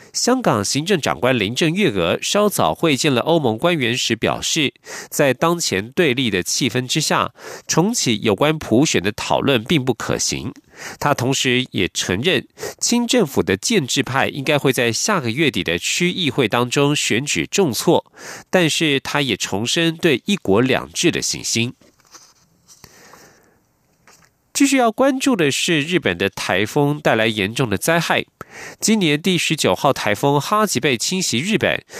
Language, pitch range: German, 125-180 Hz